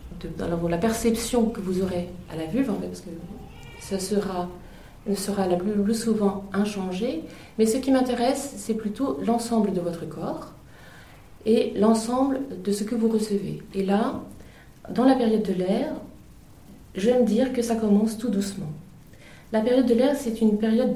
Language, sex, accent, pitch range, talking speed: French, female, French, 170-210 Hz, 165 wpm